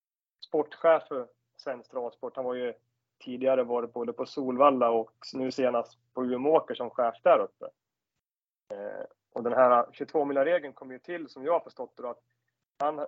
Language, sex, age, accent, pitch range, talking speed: Swedish, male, 30-49, native, 120-145 Hz, 155 wpm